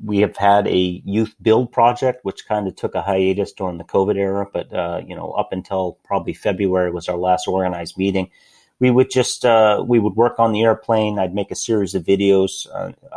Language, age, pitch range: English, 40-59, 90-105 Hz